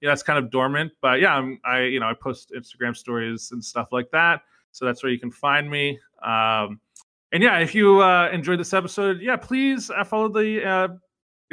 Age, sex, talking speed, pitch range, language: 30-49, male, 210 wpm, 125-165 Hz, English